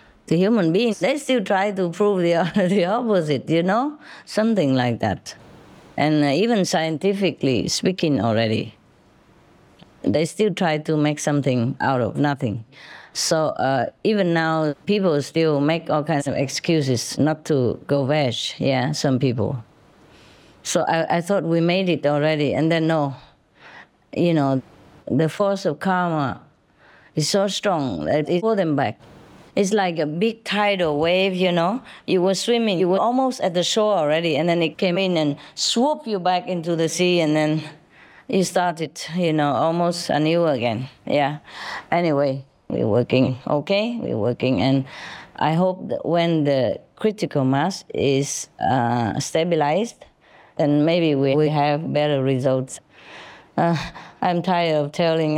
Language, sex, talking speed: English, female, 155 wpm